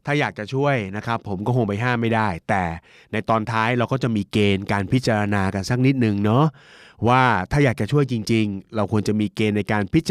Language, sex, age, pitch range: Thai, male, 30-49, 100-130 Hz